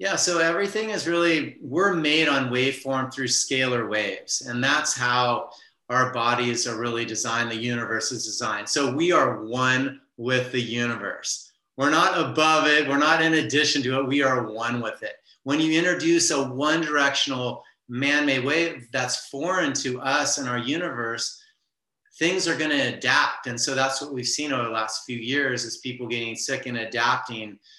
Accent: American